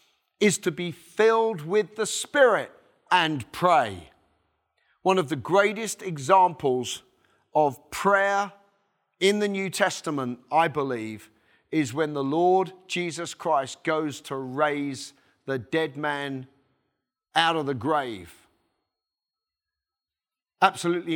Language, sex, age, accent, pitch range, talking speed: English, male, 40-59, British, 135-180 Hz, 110 wpm